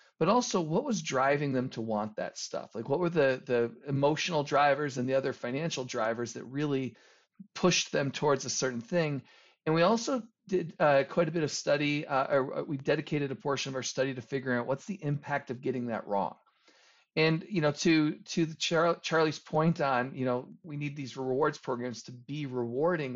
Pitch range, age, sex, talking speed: 125-155 Hz, 40-59, male, 205 wpm